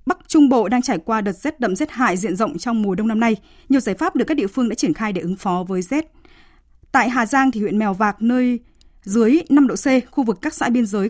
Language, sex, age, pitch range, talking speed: Vietnamese, female, 20-39, 205-275 Hz, 275 wpm